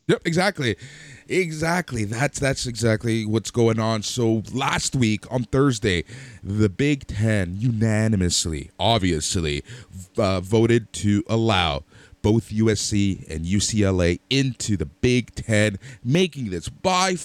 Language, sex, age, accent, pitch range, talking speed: English, male, 30-49, American, 100-145 Hz, 120 wpm